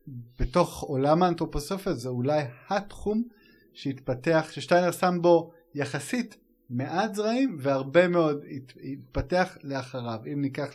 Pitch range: 125-160 Hz